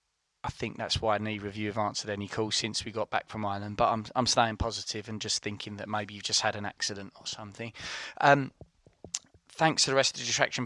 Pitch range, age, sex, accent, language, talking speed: 115-150 Hz, 20-39, male, British, English, 235 wpm